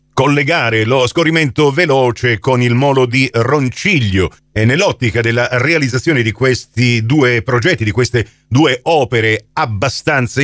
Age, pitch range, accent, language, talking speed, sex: 50-69, 110-170 Hz, native, Italian, 125 wpm, male